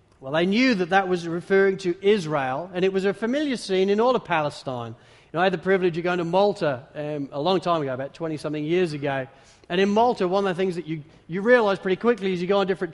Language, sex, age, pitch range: English, male, 40-59, 155-220 Hz